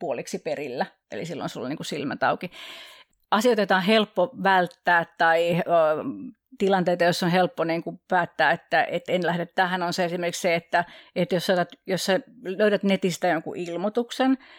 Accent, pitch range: native, 170-205 Hz